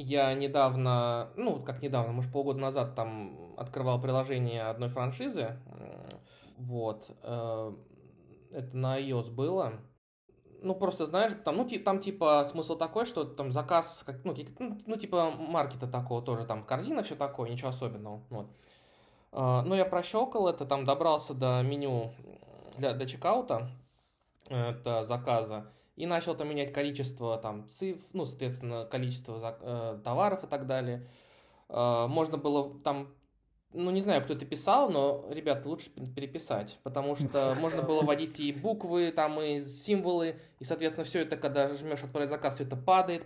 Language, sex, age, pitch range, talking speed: Russian, male, 20-39, 125-160 Hz, 145 wpm